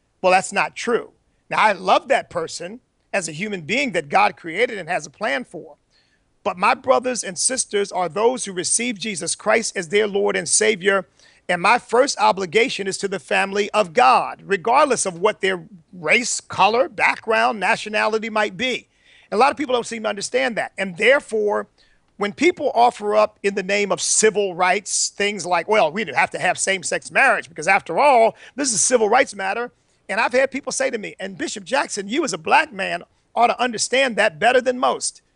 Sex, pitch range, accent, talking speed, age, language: male, 180-230 Hz, American, 205 wpm, 40-59, English